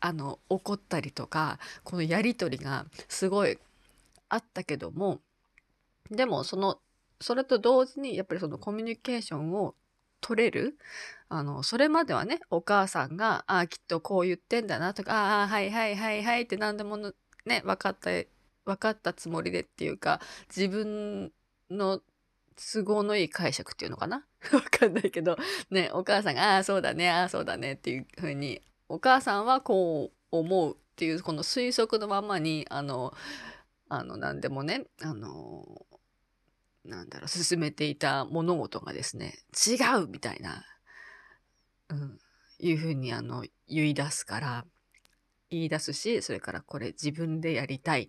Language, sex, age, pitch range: Japanese, female, 20-39, 150-210 Hz